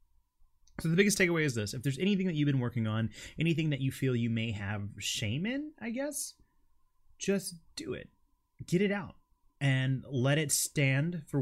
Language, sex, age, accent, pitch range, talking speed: English, male, 30-49, American, 110-145 Hz, 190 wpm